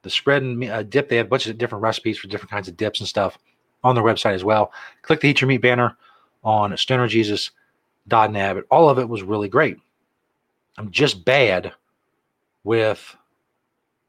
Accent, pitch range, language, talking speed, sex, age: American, 105-130 Hz, English, 175 wpm, male, 40-59